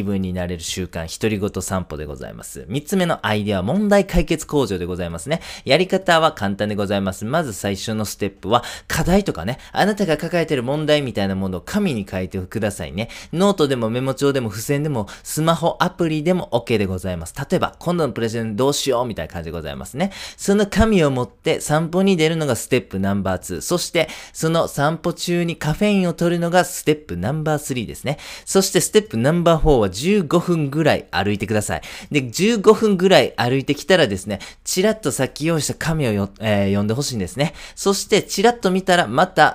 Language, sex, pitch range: Japanese, male, 105-170 Hz